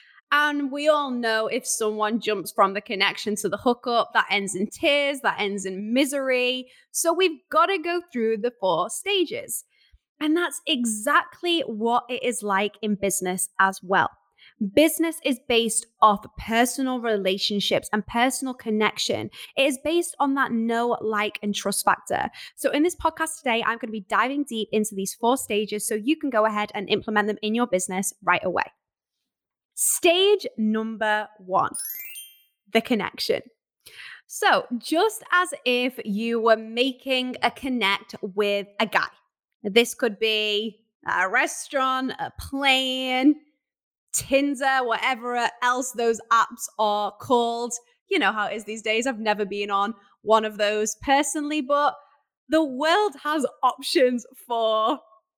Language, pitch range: English, 210-280 Hz